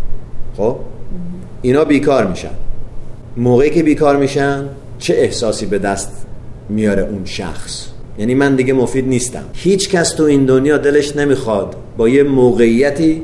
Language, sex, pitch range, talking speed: Persian, male, 120-165 Hz, 135 wpm